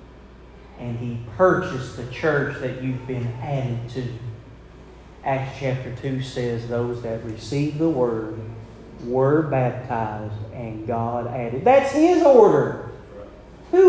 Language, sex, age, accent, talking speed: English, male, 30-49, American, 120 wpm